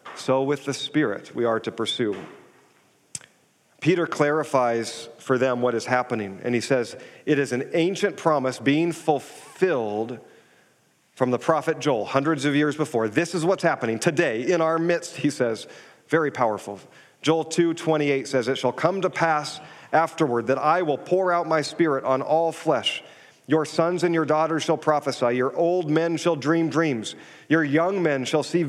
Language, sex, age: English, male, 40-59